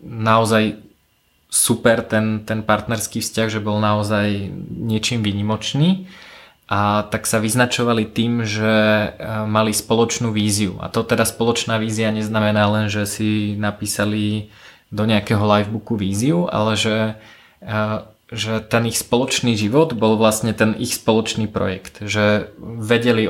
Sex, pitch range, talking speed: male, 105-115 Hz, 125 wpm